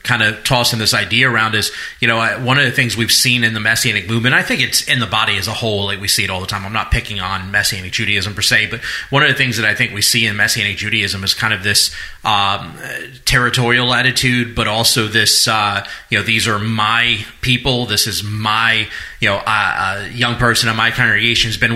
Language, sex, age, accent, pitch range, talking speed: English, male, 30-49, American, 110-125 Hz, 240 wpm